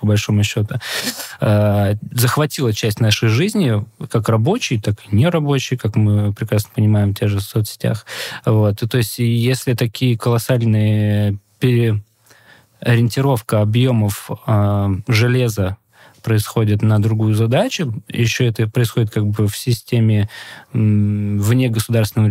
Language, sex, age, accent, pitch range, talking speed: Russian, male, 20-39, native, 105-125 Hz, 125 wpm